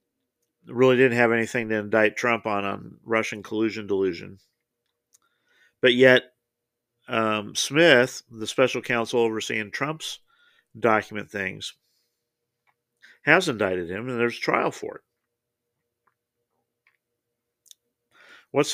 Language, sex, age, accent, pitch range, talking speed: English, male, 50-69, American, 115-135 Hz, 100 wpm